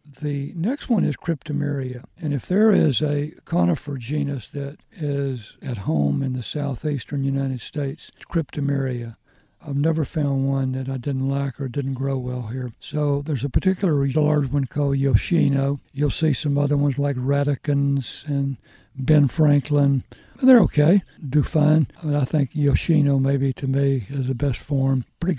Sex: male